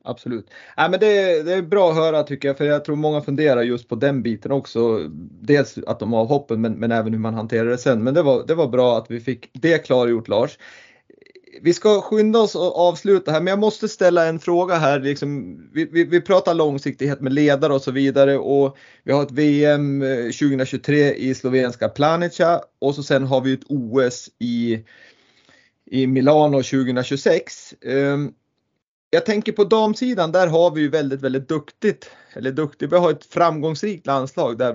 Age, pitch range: 30-49, 130-170 Hz